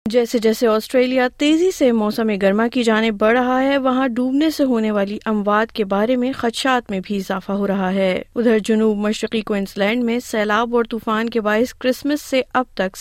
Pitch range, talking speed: 160-255 Hz, 195 wpm